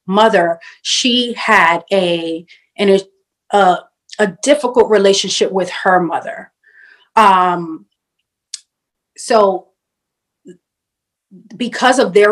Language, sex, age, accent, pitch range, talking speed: English, female, 30-49, American, 180-205 Hz, 85 wpm